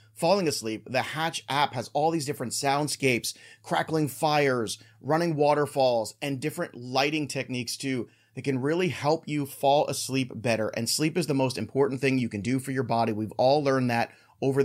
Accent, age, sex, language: American, 30-49, male, English